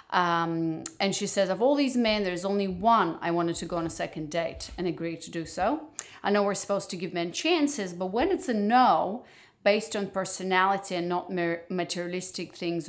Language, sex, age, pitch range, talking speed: English, female, 30-49, 175-210 Hz, 205 wpm